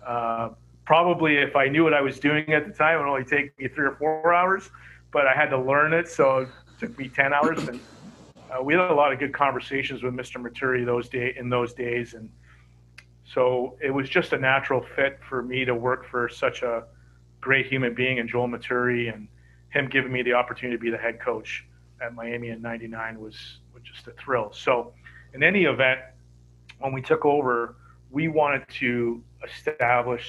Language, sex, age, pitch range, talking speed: English, male, 40-59, 115-135 Hz, 205 wpm